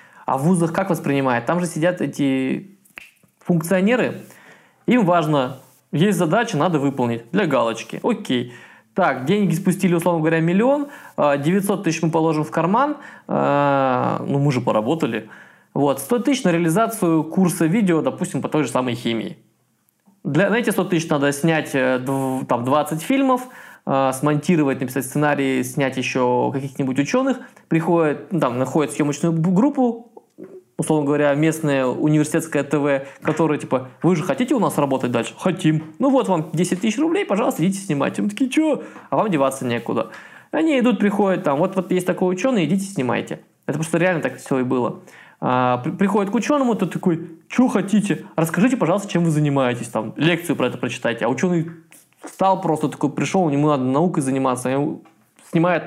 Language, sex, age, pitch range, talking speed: Russian, male, 20-39, 140-190 Hz, 160 wpm